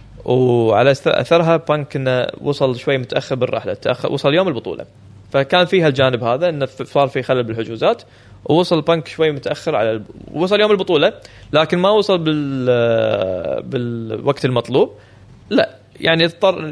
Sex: male